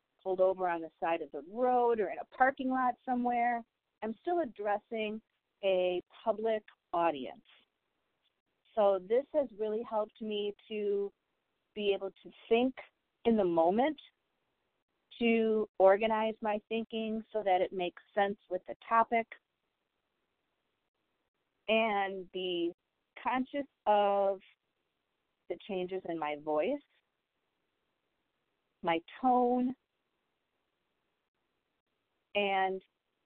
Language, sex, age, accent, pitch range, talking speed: English, female, 40-59, American, 185-240 Hz, 105 wpm